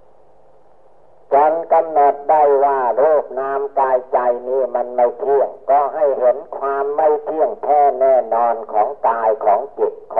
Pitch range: 125-155 Hz